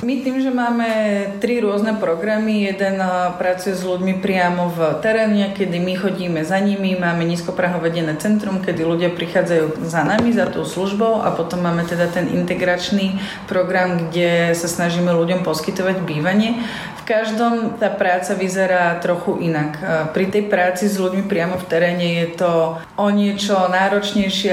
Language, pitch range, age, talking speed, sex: Slovak, 175-205 Hz, 30-49, 155 wpm, female